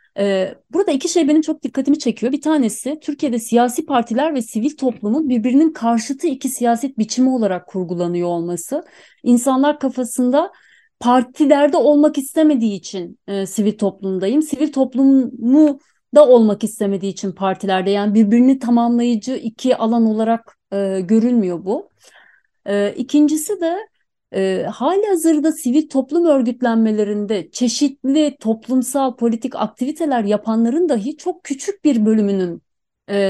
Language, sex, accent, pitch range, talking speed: Turkish, female, native, 205-275 Hz, 120 wpm